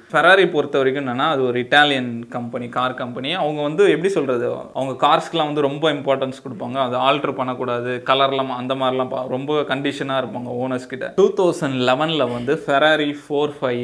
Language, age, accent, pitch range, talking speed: Tamil, 20-39, native, 125-150 Hz, 115 wpm